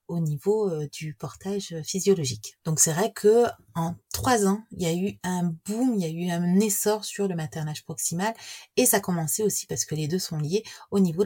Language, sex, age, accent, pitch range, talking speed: French, female, 30-49, French, 155-210 Hz, 215 wpm